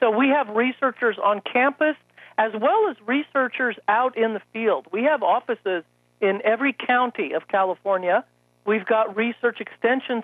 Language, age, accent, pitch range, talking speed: English, 50-69, American, 185-235 Hz, 150 wpm